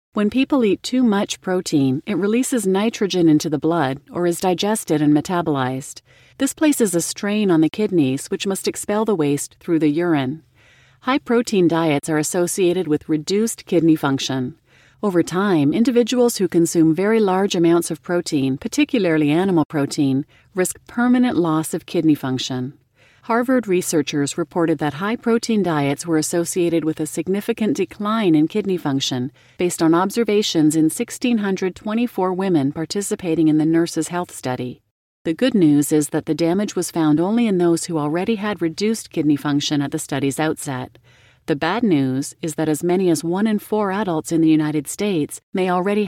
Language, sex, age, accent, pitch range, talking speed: English, female, 40-59, American, 150-200 Hz, 165 wpm